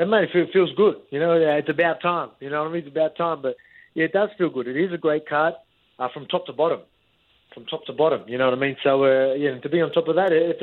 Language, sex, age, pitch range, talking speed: English, male, 30-49, 135-170 Hz, 300 wpm